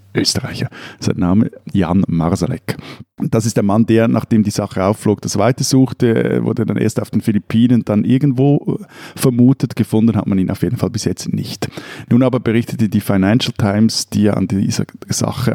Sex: male